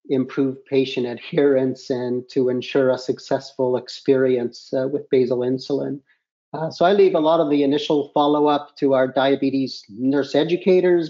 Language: English